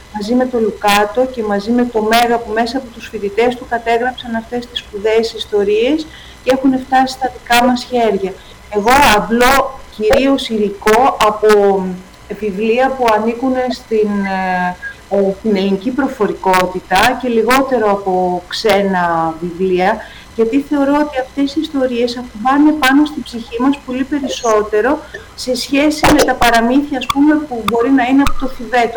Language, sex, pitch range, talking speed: Greek, female, 210-260 Hz, 145 wpm